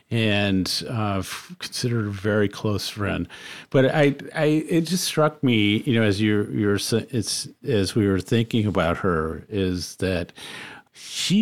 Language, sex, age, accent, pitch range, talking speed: English, male, 50-69, American, 105-130 Hz, 150 wpm